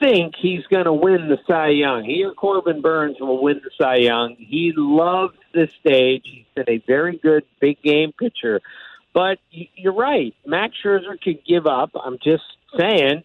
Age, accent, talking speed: 50-69, American, 180 wpm